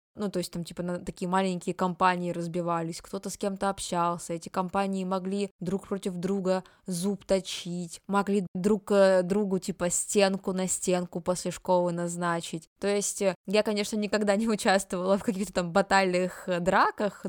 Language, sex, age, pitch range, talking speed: Russian, female, 20-39, 175-200 Hz, 150 wpm